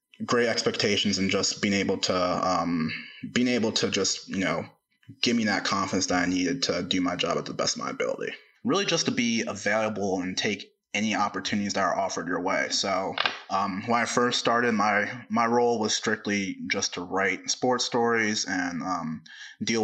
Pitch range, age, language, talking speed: 100-115 Hz, 20-39, English, 195 wpm